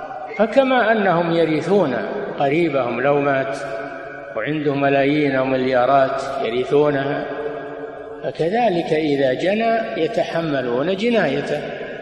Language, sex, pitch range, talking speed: Arabic, male, 140-190 Hz, 75 wpm